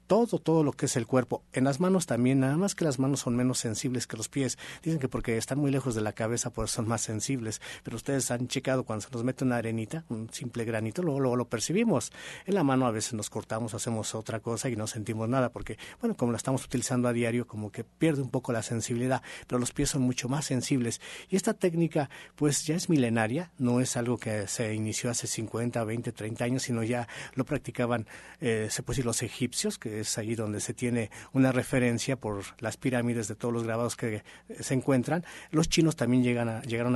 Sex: male